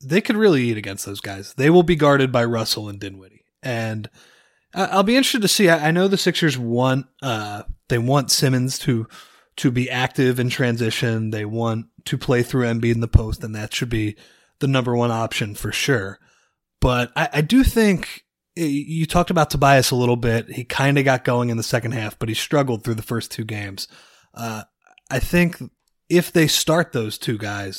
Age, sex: 30-49, male